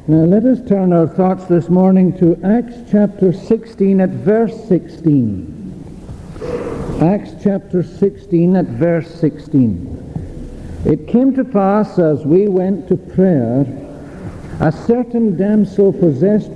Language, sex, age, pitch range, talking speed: English, male, 60-79, 160-200 Hz, 125 wpm